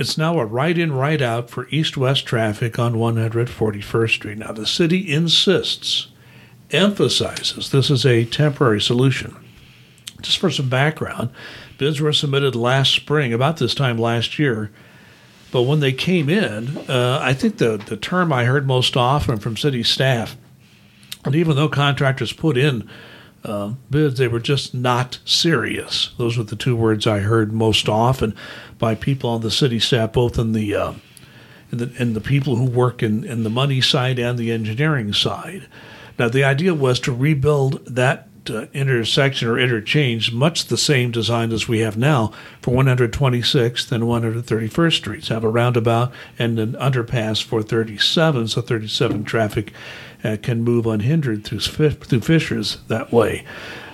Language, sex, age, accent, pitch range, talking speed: English, male, 60-79, American, 115-140 Hz, 160 wpm